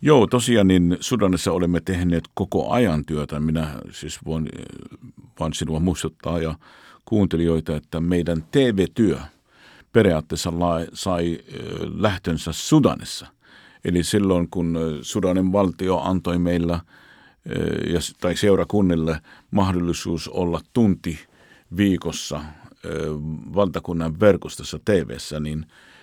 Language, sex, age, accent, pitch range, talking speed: Finnish, male, 50-69, native, 80-95 Hz, 95 wpm